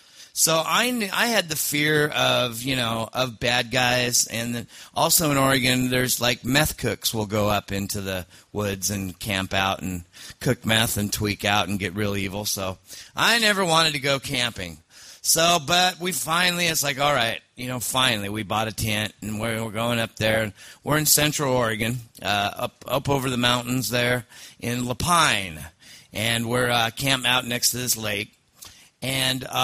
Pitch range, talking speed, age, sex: 110-145 Hz, 180 wpm, 40-59, male